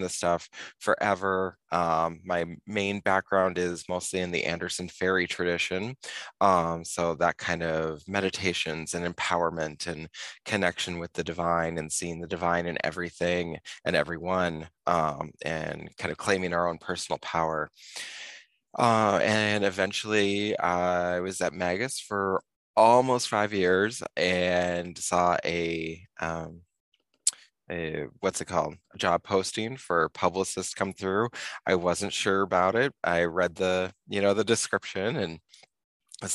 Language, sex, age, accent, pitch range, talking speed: English, male, 20-39, American, 85-100 Hz, 135 wpm